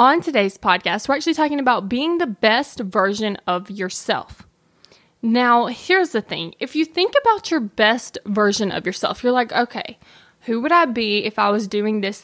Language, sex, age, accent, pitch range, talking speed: English, female, 20-39, American, 215-290 Hz, 185 wpm